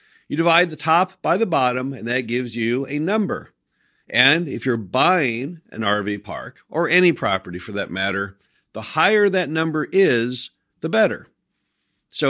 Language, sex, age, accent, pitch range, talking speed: English, male, 50-69, American, 115-170 Hz, 165 wpm